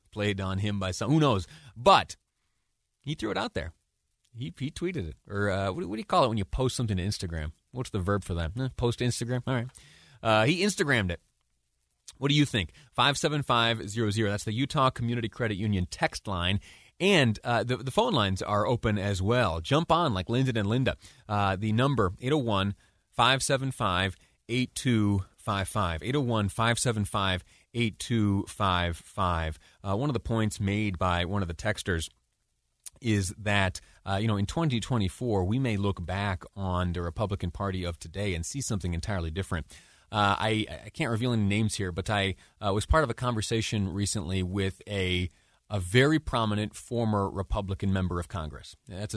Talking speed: 185 wpm